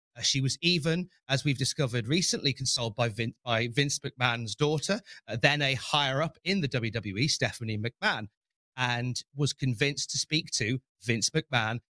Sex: male